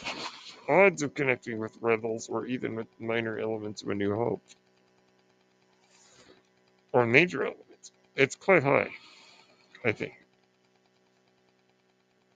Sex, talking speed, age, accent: male, 105 wpm, 50-69, American